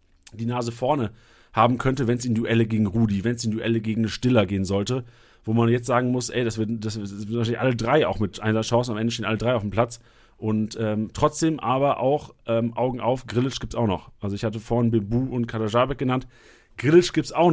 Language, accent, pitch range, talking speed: German, German, 110-145 Hz, 230 wpm